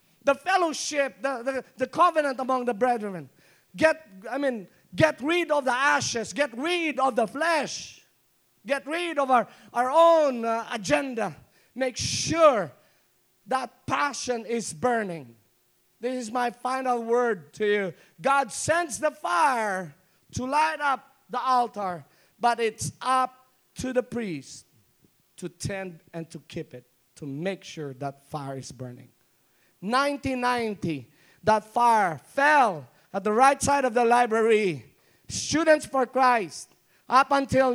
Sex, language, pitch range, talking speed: male, English, 215-290 Hz, 135 wpm